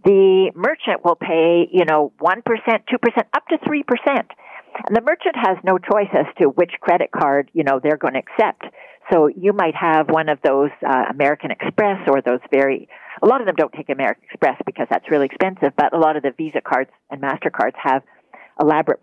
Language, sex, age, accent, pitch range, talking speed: English, female, 50-69, American, 160-215 Hz, 200 wpm